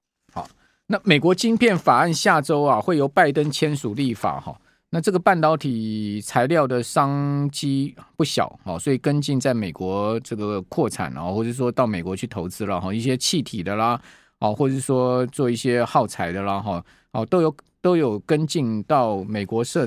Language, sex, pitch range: Chinese, male, 120-160 Hz